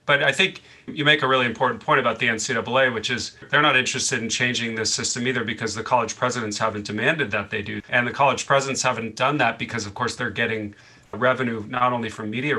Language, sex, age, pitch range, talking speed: English, male, 40-59, 105-125 Hz, 230 wpm